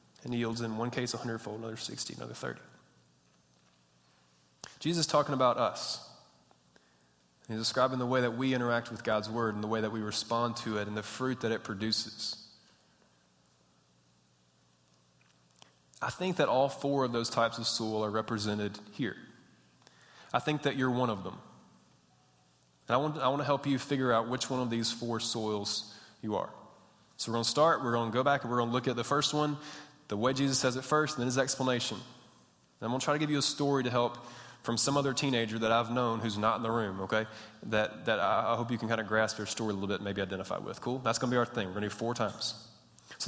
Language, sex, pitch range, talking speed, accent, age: English, male, 105-125 Hz, 220 wpm, American, 20-39